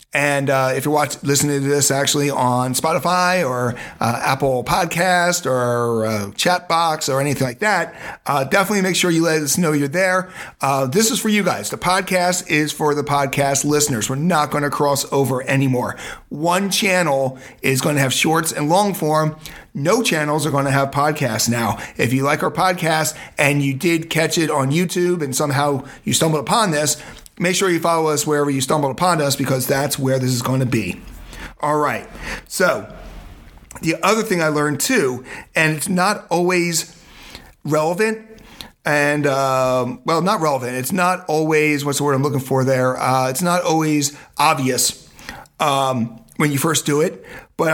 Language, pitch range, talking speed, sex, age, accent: English, 135-165 Hz, 185 wpm, male, 40-59, American